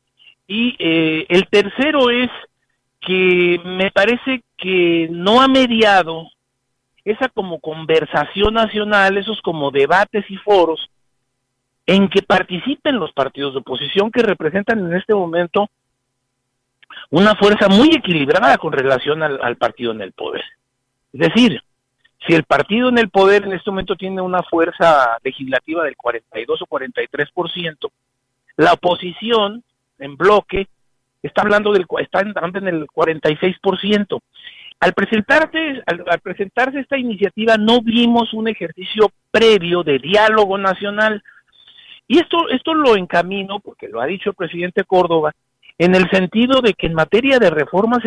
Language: Spanish